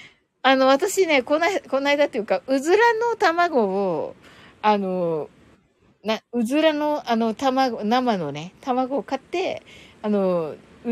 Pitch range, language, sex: 245-370 Hz, Japanese, female